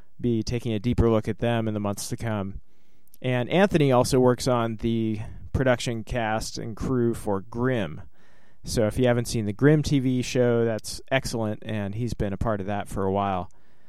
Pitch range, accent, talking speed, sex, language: 110-130 Hz, American, 195 wpm, male, English